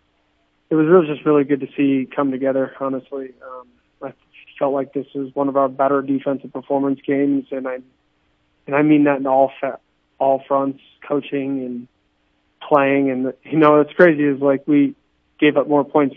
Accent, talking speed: American, 190 wpm